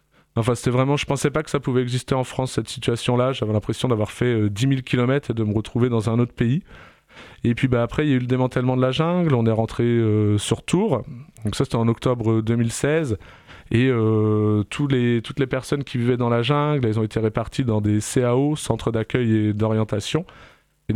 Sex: male